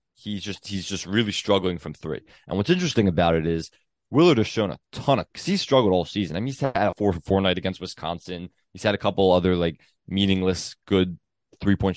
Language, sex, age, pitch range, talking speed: English, male, 20-39, 90-110 Hz, 225 wpm